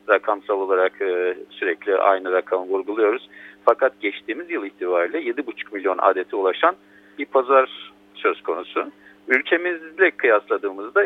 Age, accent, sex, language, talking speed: 50-69, native, male, Turkish, 110 wpm